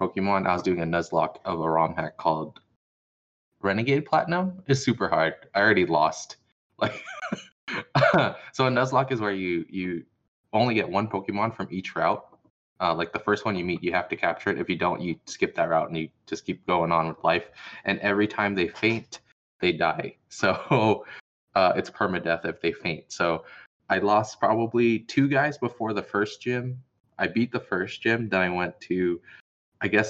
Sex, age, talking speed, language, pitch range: male, 20-39, 190 wpm, English, 90-115 Hz